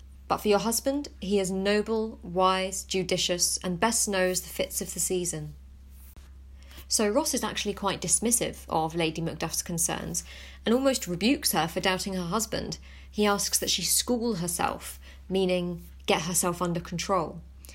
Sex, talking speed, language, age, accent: female, 155 wpm, English, 30-49, British